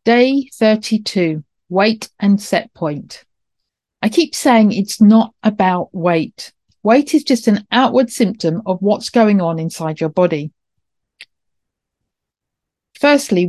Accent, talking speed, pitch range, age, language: British, 120 wpm, 180-235 Hz, 40-59, English